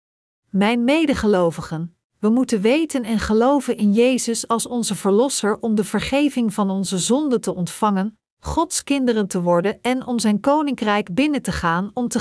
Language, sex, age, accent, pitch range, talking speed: Dutch, female, 50-69, Dutch, 200-250 Hz, 160 wpm